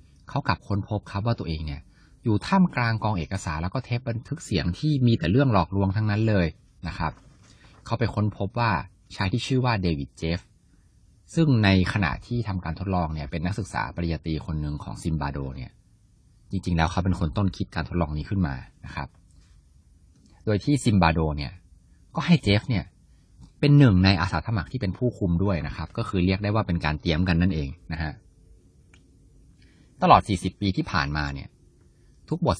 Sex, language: male, Thai